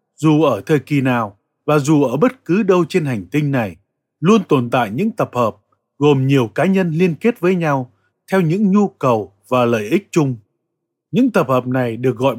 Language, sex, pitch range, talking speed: Vietnamese, male, 115-185 Hz, 210 wpm